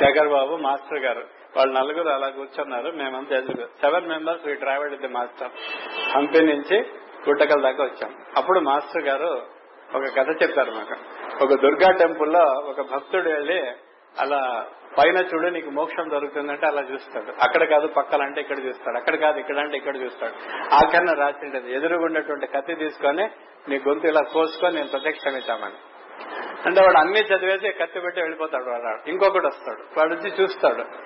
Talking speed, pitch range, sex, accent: 145 wpm, 140-165 Hz, male, native